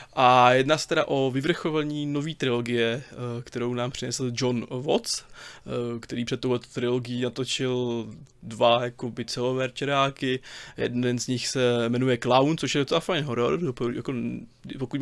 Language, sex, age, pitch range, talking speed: Czech, male, 20-39, 120-135 Hz, 135 wpm